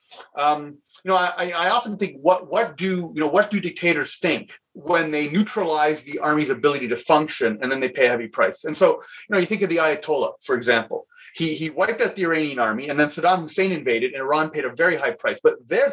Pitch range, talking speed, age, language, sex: 150-210 Hz, 235 wpm, 30-49, English, male